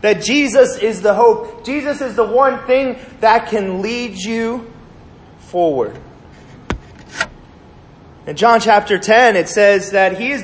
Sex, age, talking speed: male, 30-49, 140 wpm